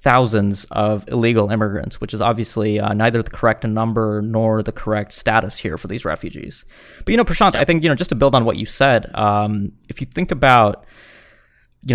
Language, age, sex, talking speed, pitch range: English, 20-39, male, 205 wpm, 110-130 Hz